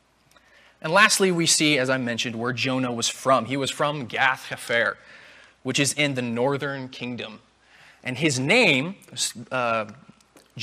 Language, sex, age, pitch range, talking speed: English, male, 20-39, 130-185 Hz, 140 wpm